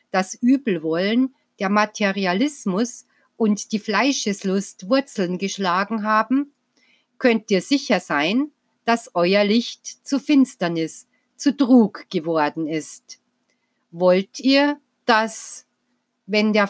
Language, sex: German, female